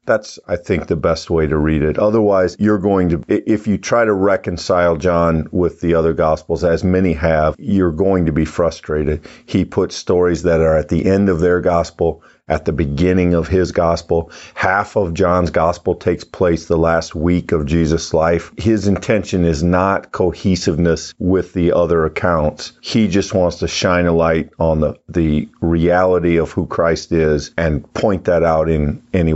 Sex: male